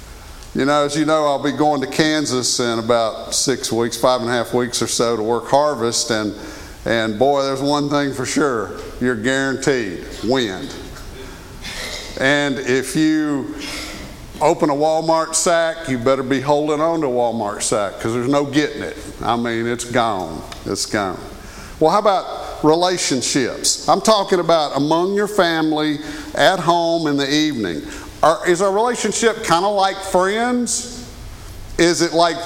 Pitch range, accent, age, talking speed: 135-195 Hz, American, 50-69, 160 wpm